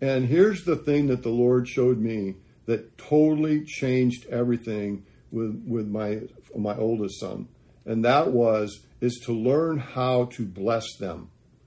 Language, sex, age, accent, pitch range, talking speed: English, male, 50-69, American, 120-170 Hz, 150 wpm